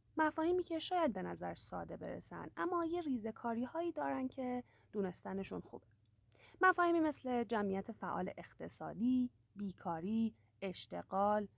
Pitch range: 190-270 Hz